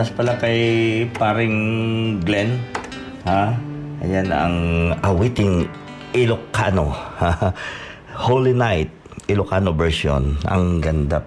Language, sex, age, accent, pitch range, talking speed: Filipino, male, 50-69, native, 85-115 Hz, 85 wpm